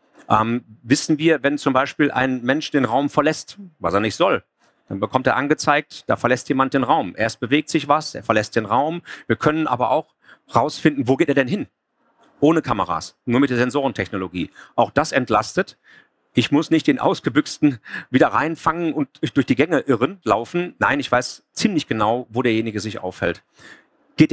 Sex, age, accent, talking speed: male, 40-59, German, 185 wpm